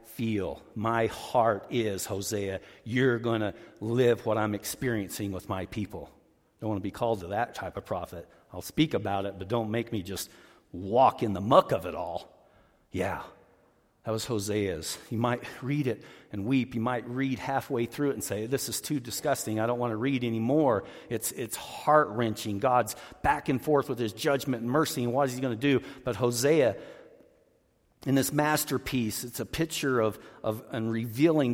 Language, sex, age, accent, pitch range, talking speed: English, male, 50-69, American, 110-135 Hz, 190 wpm